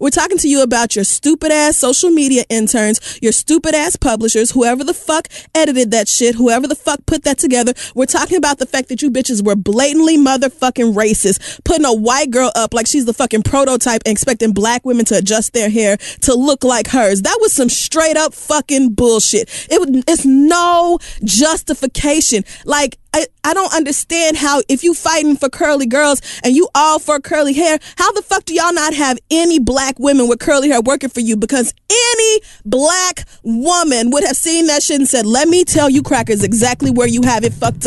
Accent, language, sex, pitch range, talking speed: American, English, female, 235-300 Hz, 200 wpm